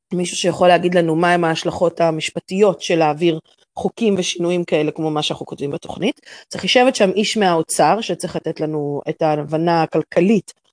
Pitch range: 165-220 Hz